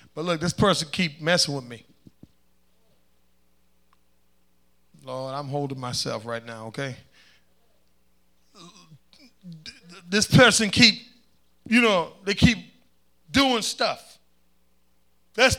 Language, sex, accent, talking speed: English, male, American, 95 wpm